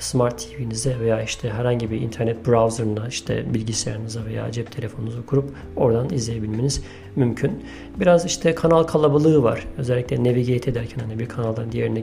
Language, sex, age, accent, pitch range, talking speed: Turkish, male, 40-59, native, 115-135 Hz, 145 wpm